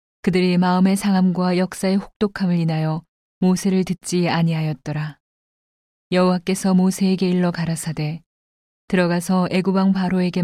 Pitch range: 160-185 Hz